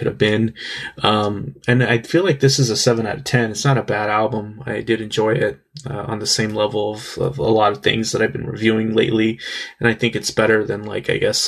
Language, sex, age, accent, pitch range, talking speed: English, male, 20-39, American, 110-135 Hz, 250 wpm